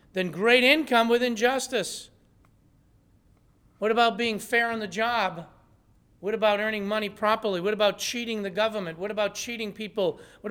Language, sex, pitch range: English, male, 165-230 Hz